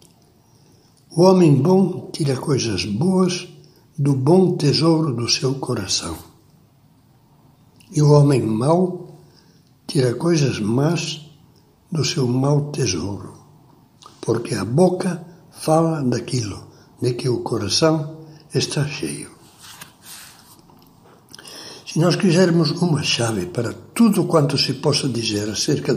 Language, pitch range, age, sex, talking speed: Portuguese, 125-160 Hz, 60-79, male, 105 wpm